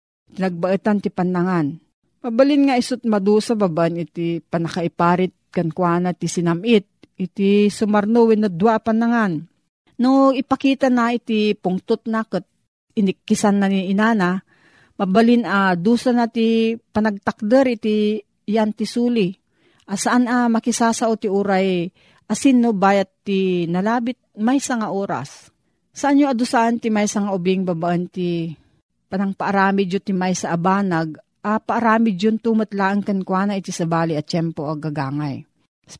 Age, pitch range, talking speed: 40-59, 180-225 Hz, 135 wpm